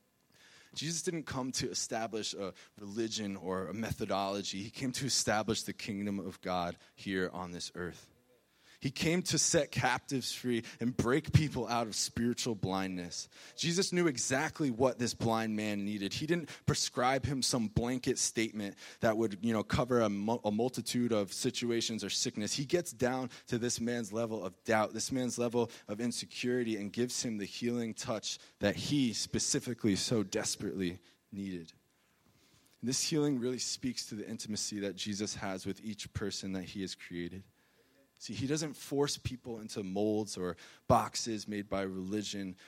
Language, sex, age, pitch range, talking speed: English, male, 20-39, 100-125 Hz, 165 wpm